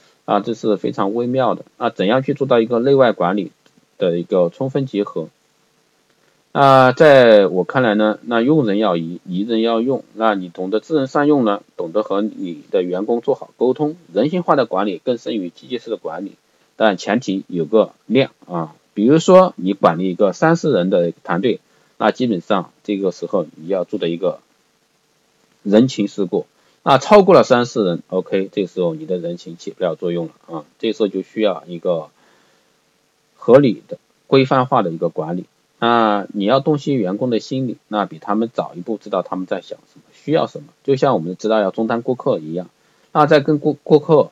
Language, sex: Chinese, male